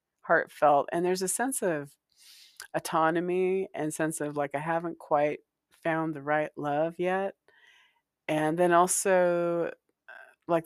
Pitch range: 140-180 Hz